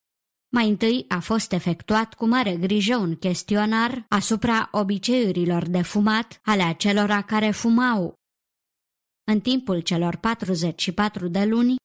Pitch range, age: 190-235 Hz, 20-39